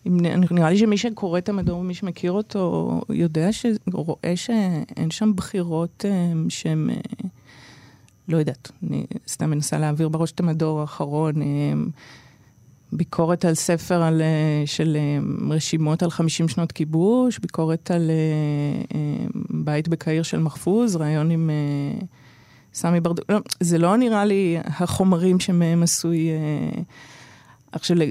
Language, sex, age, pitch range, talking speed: Hebrew, female, 30-49, 150-180 Hz, 115 wpm